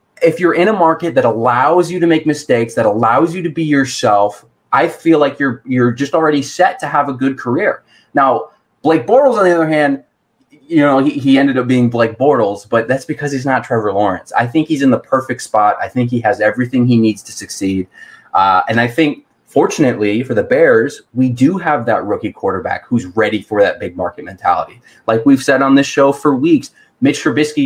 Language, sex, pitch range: English, male, 115-150 Hz